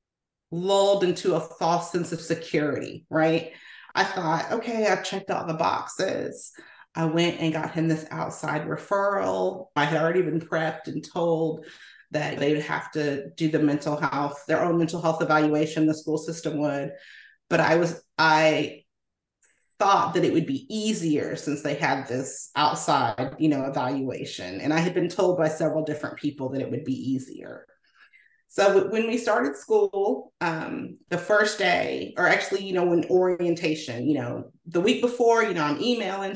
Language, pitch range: English, 150-180 Hz